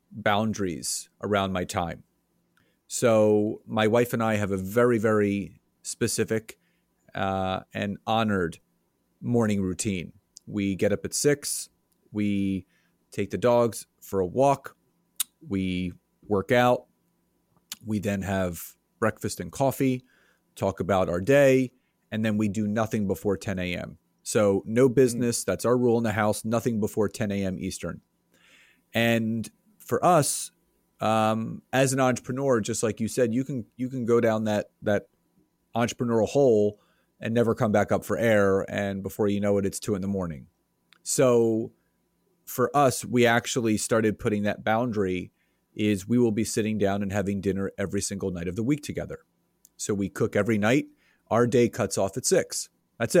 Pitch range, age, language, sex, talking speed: 100-120 Hz, 30-49, English, male, 160 wpm